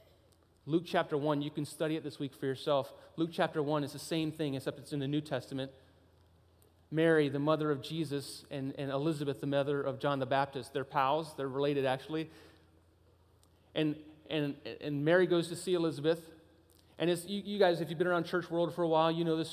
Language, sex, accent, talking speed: English, male, American, 210 wpm